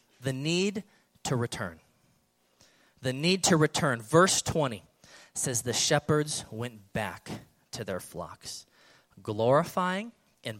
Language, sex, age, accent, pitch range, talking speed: English, male, 30-49, American, 120-180 Hz, 115 wpm